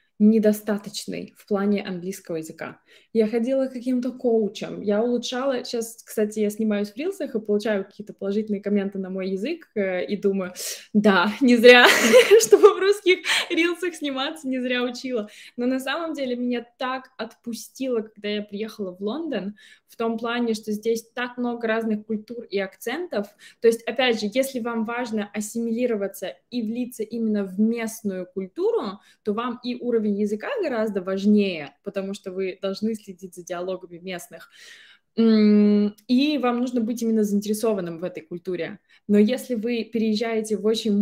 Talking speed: 155 wpm